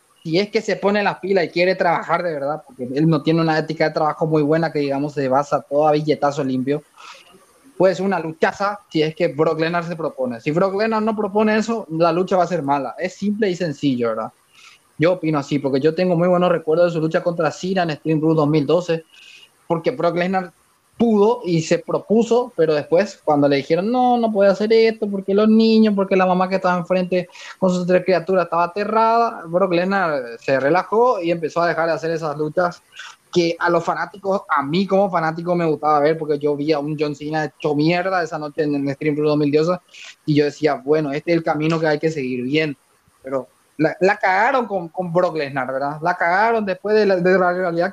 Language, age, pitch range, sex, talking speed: Spanish, 20-39, 155-190 Hz, male, 220 wpm